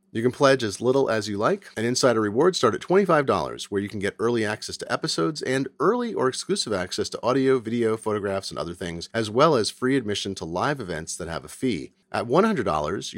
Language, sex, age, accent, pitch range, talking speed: English, male, 40-59, American, 100-145 Hz, 220 wpm